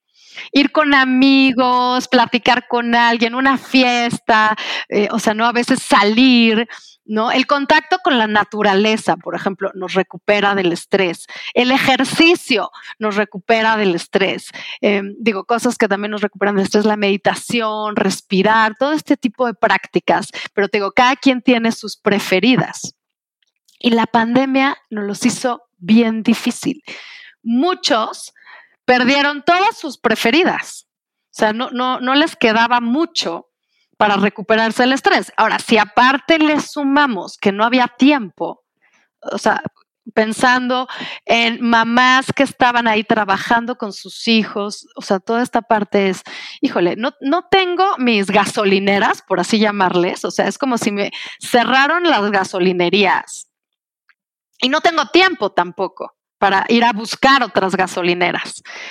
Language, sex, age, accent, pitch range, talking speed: Spanish, female, 30-49, Mexican, 210-270 Hz, 140 wpm